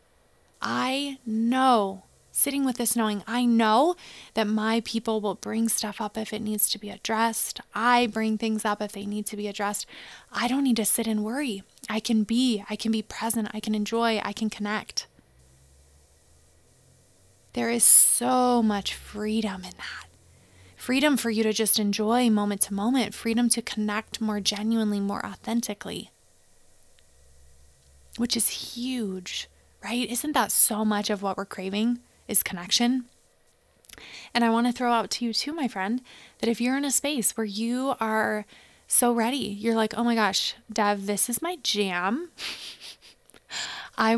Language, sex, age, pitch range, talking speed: English, female, 20-39, 205-235 Hz, 165 wpm